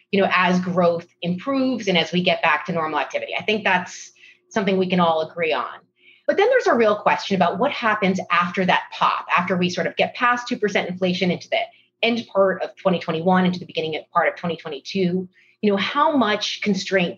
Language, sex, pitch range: English, female, 170-220 Hz